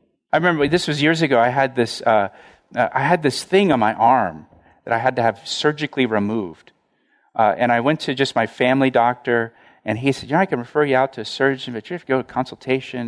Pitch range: 130-190 Hz